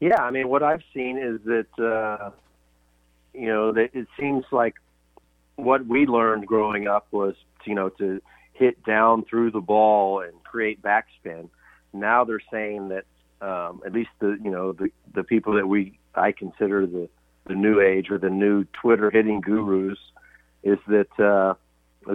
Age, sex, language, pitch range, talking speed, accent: 40-59, male, English, 95-115 Hz, 170 wpm, American